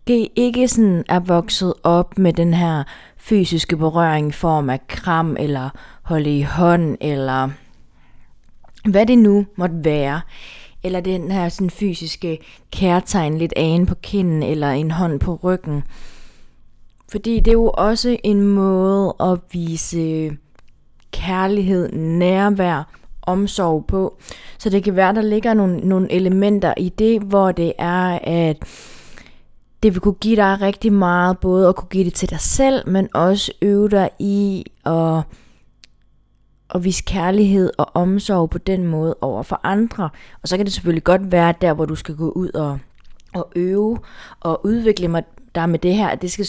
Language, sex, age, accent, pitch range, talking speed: Danish, female, 20-39, native, 160-195 Hz, 160 wpm